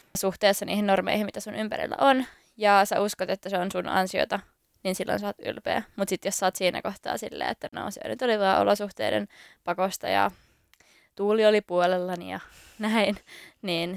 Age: 20-39